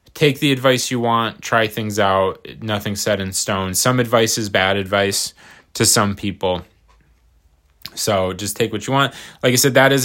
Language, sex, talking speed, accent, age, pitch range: English, male, 185 wpm, American, 20-39, 95-120 Hz